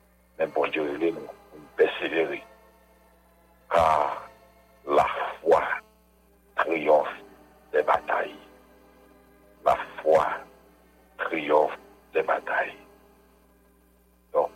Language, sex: English, male